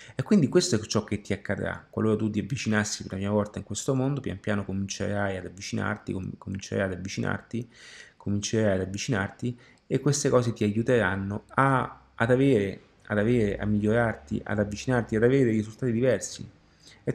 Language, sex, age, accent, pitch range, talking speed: Italian, male, 30-49, native, 100-120 Hz, 175 wpm